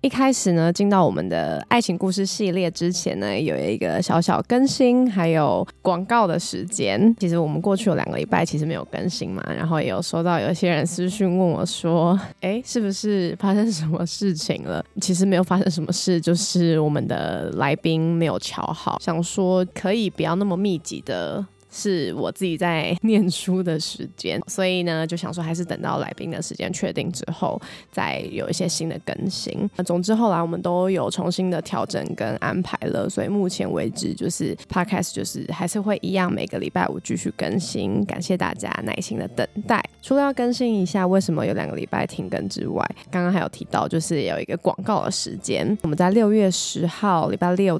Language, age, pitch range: Chinese, 20-39, 170-200 Hz